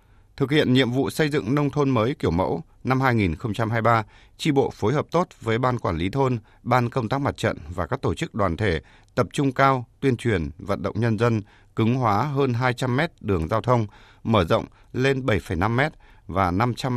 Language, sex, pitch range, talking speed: Vietnamese, male, 105-130 Hz, 205 wpm